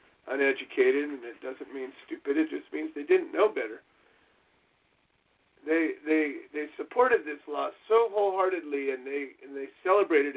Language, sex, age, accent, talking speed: English, male, 40-59, American, 150 wpm